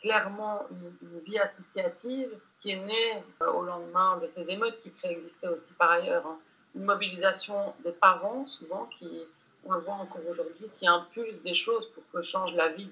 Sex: female